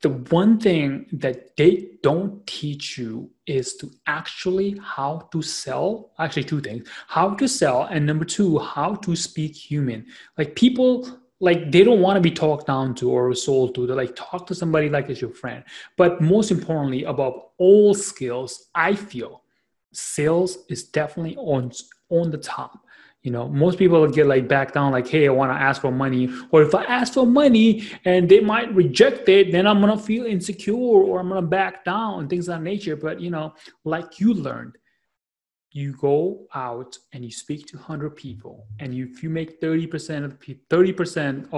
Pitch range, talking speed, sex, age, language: 130-180 Hz, 190 wpm, male, 30-49, English